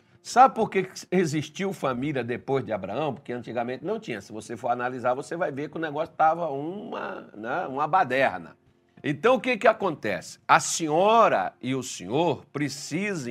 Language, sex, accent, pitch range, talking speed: Portuguese, male, Brazilian, 125-195 Hz, 170 wpm